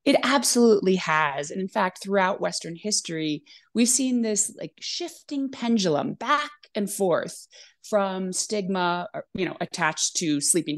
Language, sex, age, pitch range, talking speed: English, female, 30-49, 160-215 Hz, 140 wpm